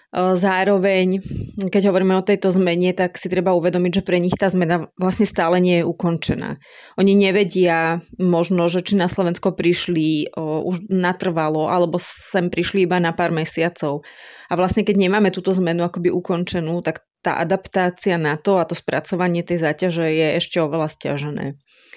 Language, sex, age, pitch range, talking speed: Slovak, female, 30-49, 170-190 Hz, 165 wpm